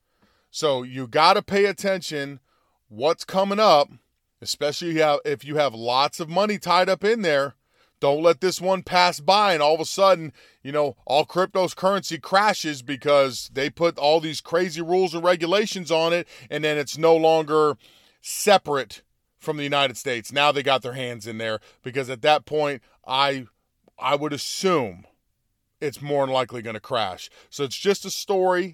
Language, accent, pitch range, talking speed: English, American, 140-175 Hz, 175 wpm